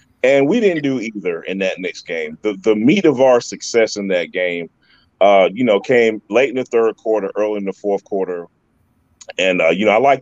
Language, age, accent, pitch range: English, 30-49, American, 105-130 Hz